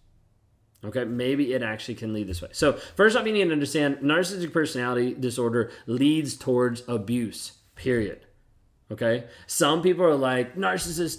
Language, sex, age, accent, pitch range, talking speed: English, male, 20-39, American, 120-145 Hz, 150 wpm